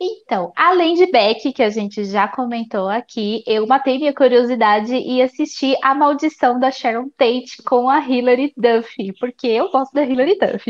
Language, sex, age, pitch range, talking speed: Portuguese, female, 10-29, 225-275 Hz, 175 wpm